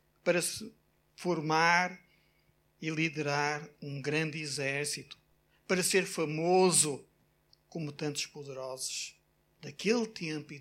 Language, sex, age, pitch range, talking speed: Portuguese, male, 60-79, 140-165 Hz, 95 wpm